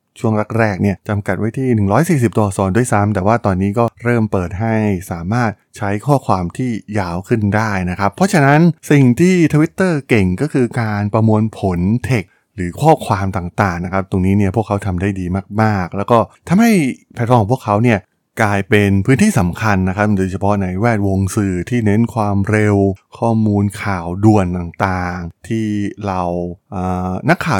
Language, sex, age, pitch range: Thai, male, 20-39, 95-120 Hz